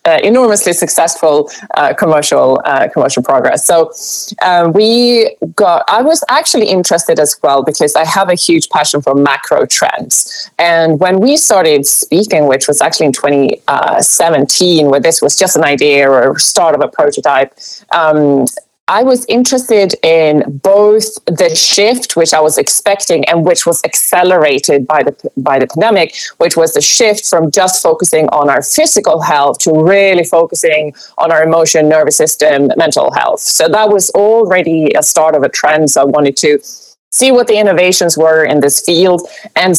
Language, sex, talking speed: English, female, 170 wpm